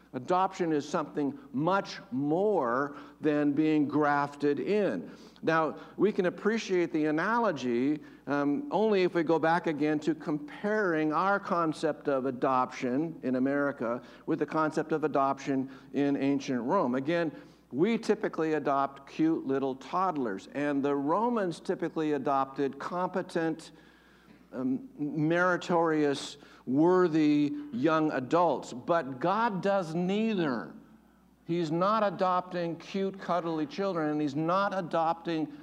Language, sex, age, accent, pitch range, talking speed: English, male, 60-79, American, 150-195 Hz, 120 wpm